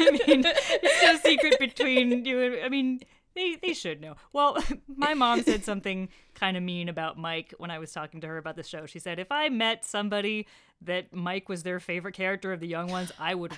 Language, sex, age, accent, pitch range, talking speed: English, female, 30-49, American, 165-235 Hz, 230 wpm